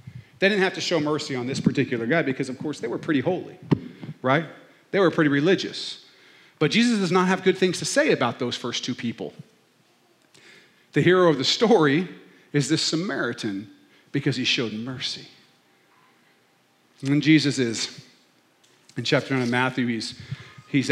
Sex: male